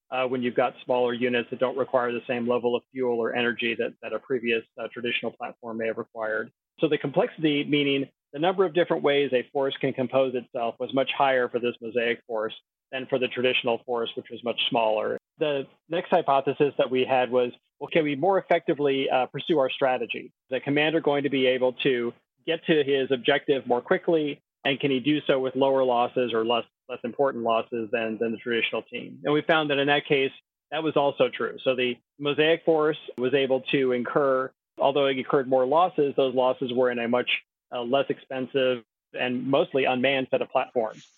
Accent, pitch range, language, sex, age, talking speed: American, 120-145 Hz, English, male, 30-49, 210 wpm